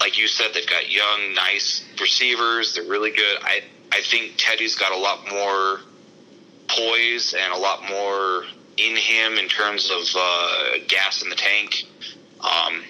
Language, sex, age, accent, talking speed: English, male, 30-49, American, 165 wpm